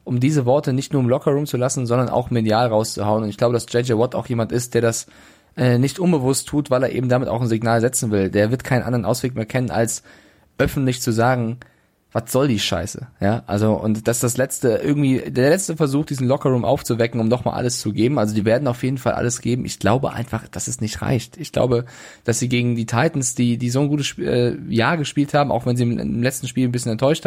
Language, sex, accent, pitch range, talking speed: German, male, German, 115-135 Hz, 240 wpm